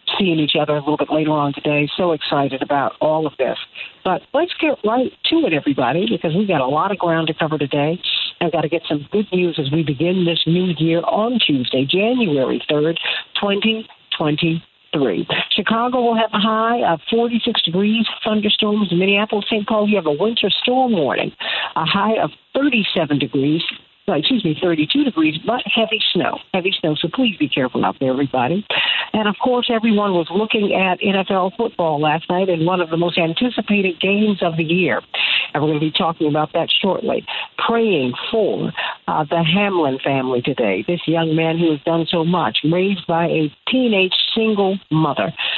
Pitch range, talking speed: 155-210 Hz, 185 wpm